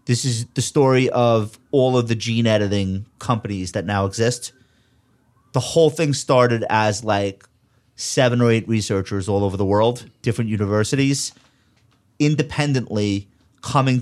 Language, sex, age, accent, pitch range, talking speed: English, male, 30-49, American, 105-125 Hz, 135 wpm